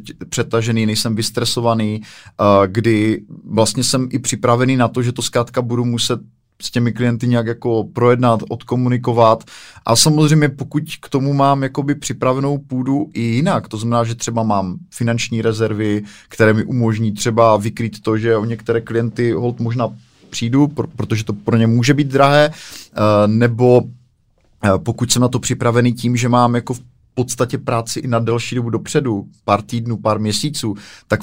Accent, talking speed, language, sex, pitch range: native, 165 wpm, Czech, male, 115-130 Hz